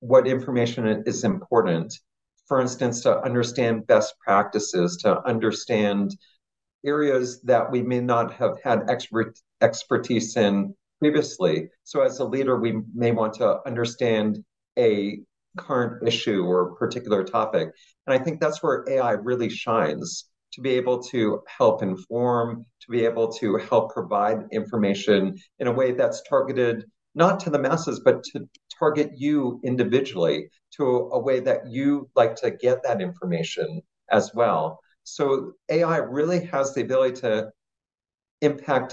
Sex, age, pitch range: male, 40-59, 110-135 Hz